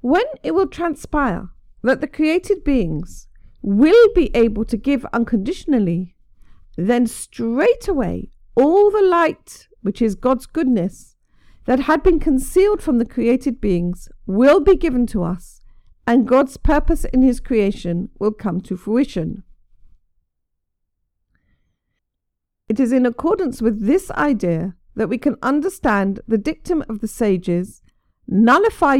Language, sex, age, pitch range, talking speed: English, female, 50-69, 185-270 Hz, 130 wpm